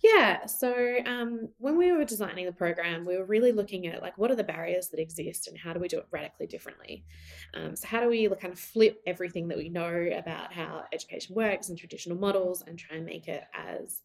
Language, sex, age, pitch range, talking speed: English, female, 20-39, 165-215 Hz, 230 wpm